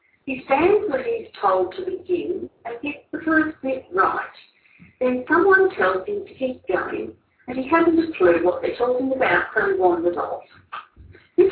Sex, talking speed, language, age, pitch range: female, 175 wpm, English, 50-69, 260-405 Hz